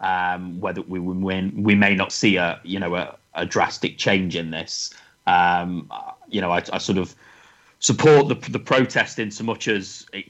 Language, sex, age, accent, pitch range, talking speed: English, male, 30-49, British, 95-110 Hz, 190 wpm